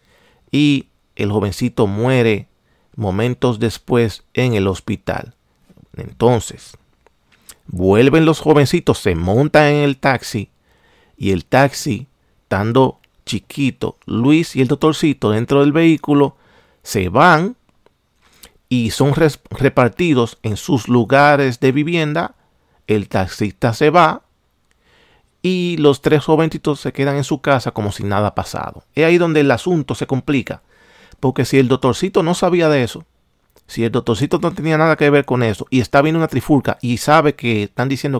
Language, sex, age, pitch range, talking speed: Spanish, male, 40-59, 110-145 Hz, 145 wpm